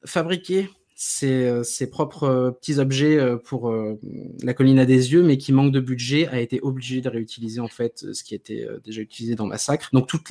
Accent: French